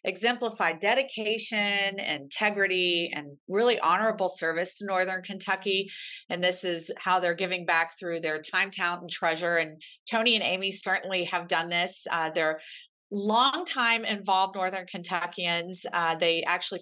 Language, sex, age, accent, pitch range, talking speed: English, female, 40-59, American, 165-190 Hz, 145 wpm